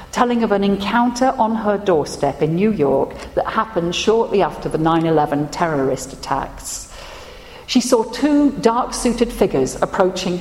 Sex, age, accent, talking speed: female, 50-69, British, 150 wpm